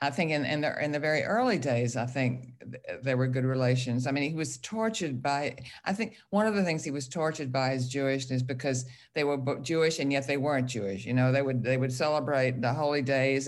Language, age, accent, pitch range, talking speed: English, 50-69, American, 125-150 Hz, 235 wpm